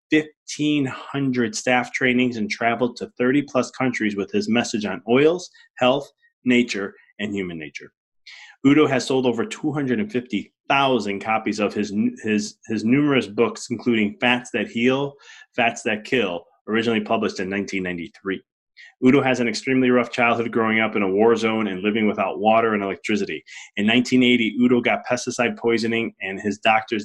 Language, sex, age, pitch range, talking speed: English, male, 20-39, 105-125 Hz, 155 wpm